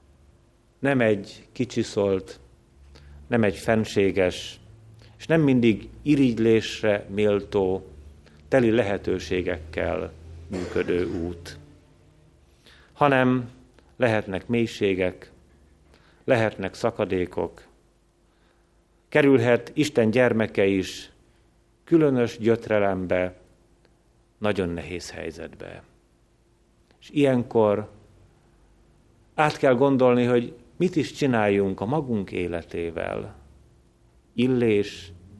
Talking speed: 70 wpm